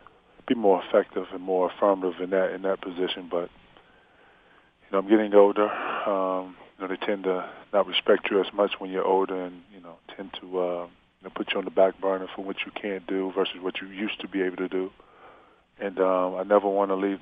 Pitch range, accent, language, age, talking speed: 90-100 Hz, American, English, 20-39, 225 wpm